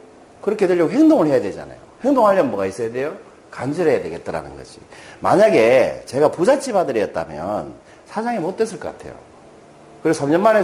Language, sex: Korean, male